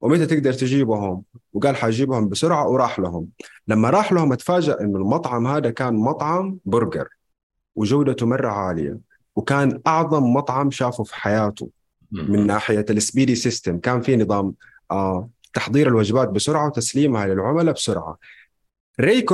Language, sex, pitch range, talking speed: Arabic, male, 105-150 Hz, 125 wpm